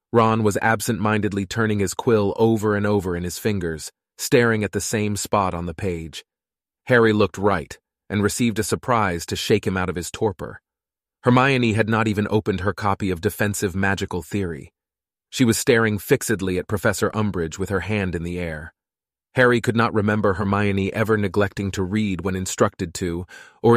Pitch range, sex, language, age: 95-110 Hz, male, Italian, 30-49